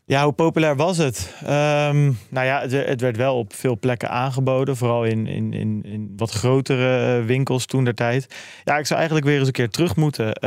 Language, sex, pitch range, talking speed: Dutch, male, 115-135 Hz, 200 wpm